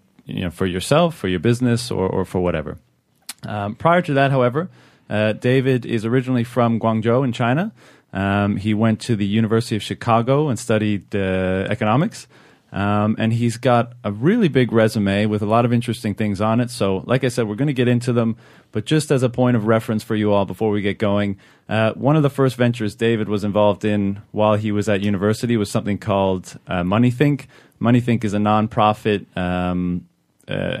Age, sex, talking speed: 30-49, male, 200 wpm